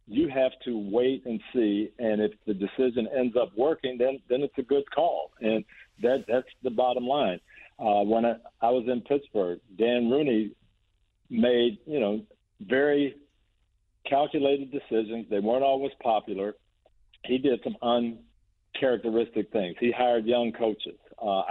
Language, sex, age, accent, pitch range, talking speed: English, male, 50-69, American, 110-130 Hz, 150 wpm